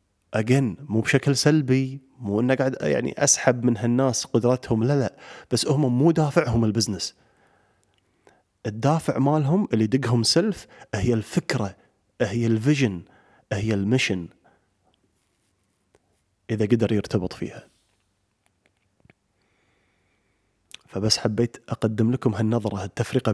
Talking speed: 105 wpm